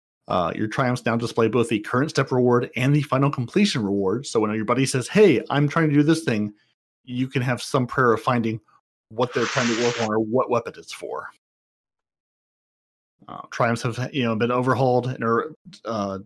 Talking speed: 205 wpm